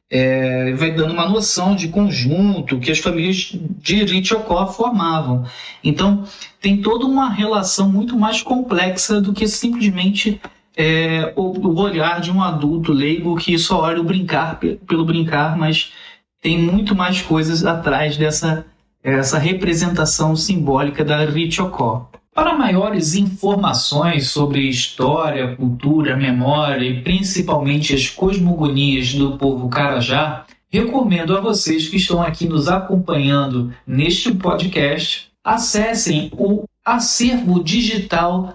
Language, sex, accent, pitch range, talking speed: Portuguese, male, Brazilian, 145-195 Hz, 120 wpm